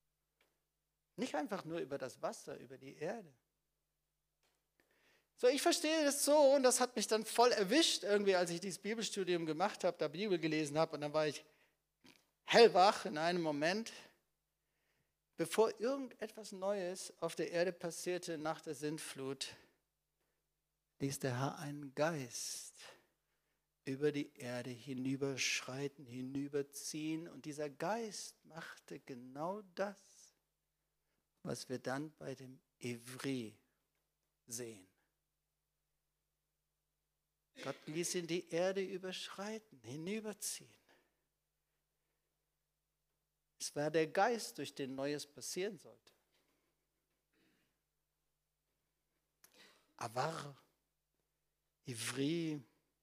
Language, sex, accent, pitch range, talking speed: German, male, German, 145-205 Hz, 105 wpm